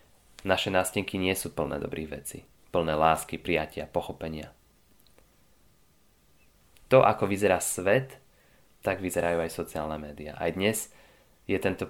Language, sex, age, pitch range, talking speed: Slovak, male, 20-39, 85-105 Hz, 120 wpm